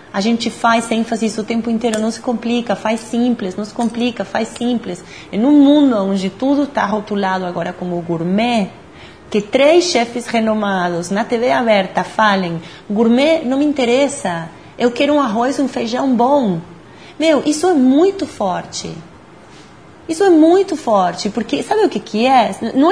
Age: 30-49